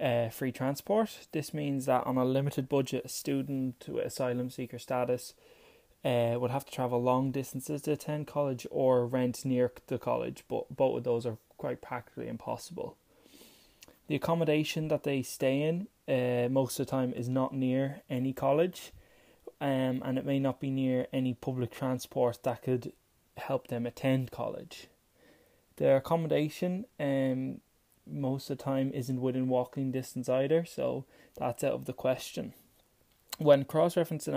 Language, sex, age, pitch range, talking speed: English, male, 20-39, 125-145 Hz, 160 wpm